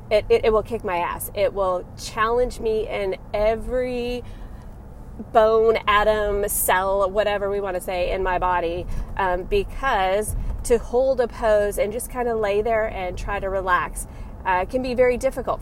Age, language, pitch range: 30-49, English, 195-250 Hz